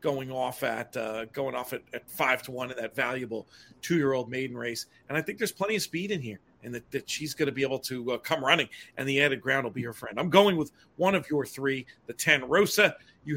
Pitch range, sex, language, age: 135-175 Hz, male, English, 40-59